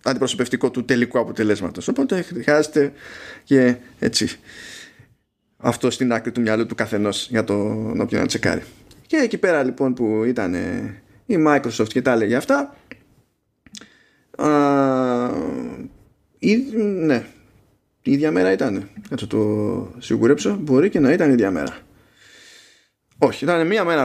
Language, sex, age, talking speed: Greek, male, 20-39, 130 wpm